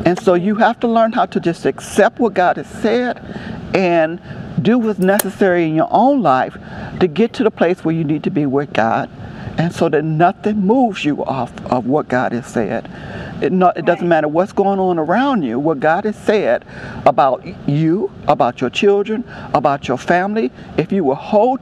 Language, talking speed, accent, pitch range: English, 195 wpm, American, 155-200 Hz